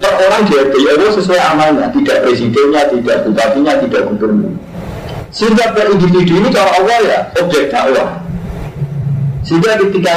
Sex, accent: male, native